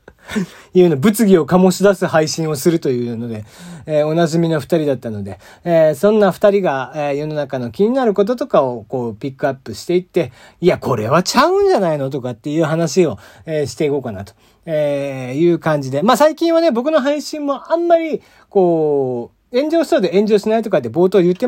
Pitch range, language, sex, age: 130-200 Hz, Japanese, male, 40-59